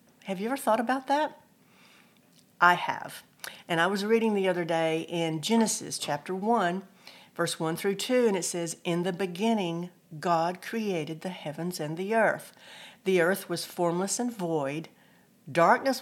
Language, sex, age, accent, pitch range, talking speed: English, female, 50-69, American, 165-215 Hz, 160 wpm